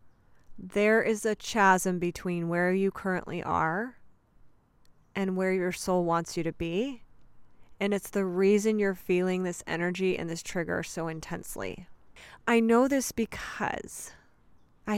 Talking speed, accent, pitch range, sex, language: 140 wpm, American, 170-200 Hz, female, English